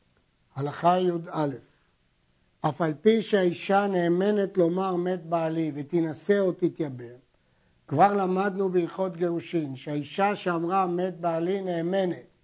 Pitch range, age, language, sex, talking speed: 170-220 Hz, 60-79, Hebrew, male, 105 wpm